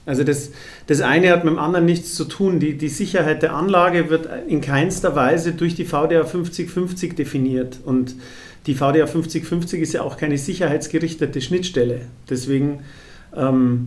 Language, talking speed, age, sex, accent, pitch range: German, 160 wpm, 40-59, male, German, 150-180 Hz